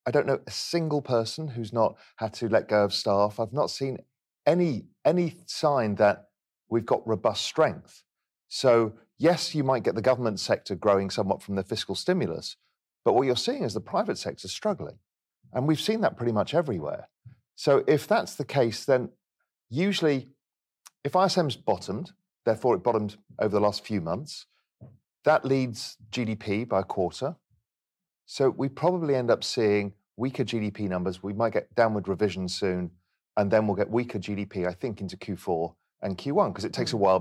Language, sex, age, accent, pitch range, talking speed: English, male, 40-59, British, 95-135 Hz, 180 wpm